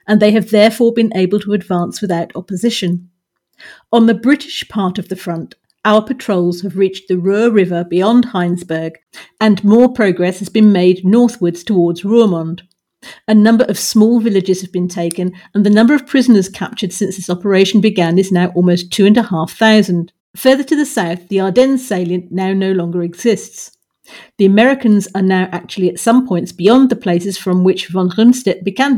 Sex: female